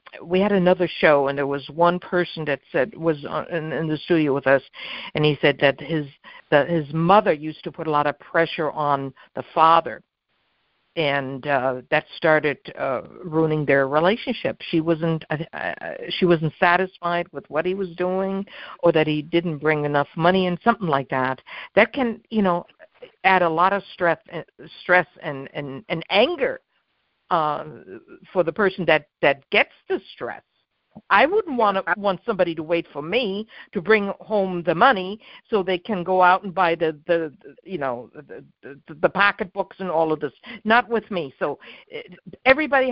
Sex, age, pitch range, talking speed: female, 60-79, 155-215 Hz, 180 wpm